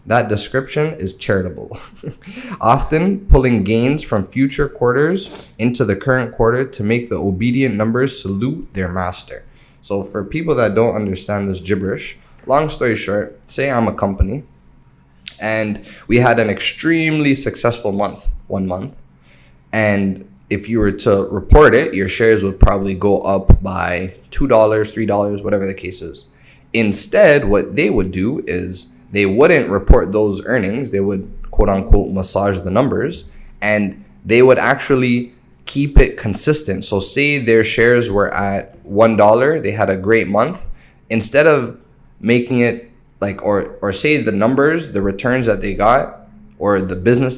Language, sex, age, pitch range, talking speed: English, male, 20-39, 100-125 Hz, 155 wpm